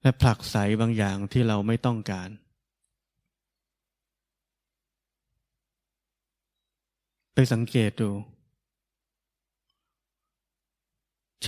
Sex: male